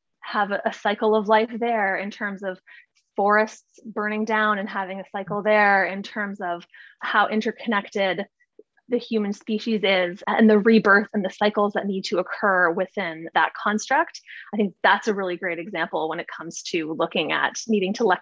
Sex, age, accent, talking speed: female, 20-39, American, 180 wpm